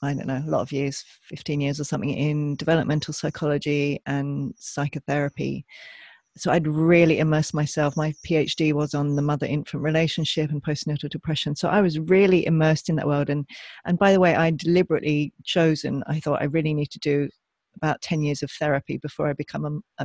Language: English